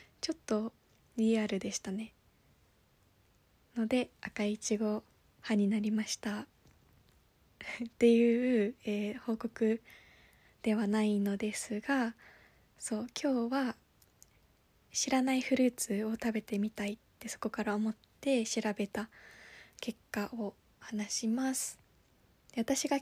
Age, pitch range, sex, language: 20-39, 215-255 Hz, female, Japanese